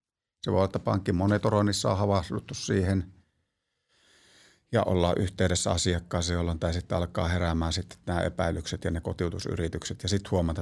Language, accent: Finnish, native